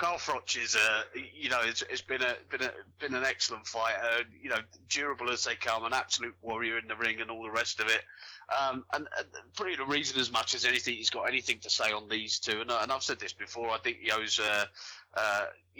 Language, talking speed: English, 245 wpm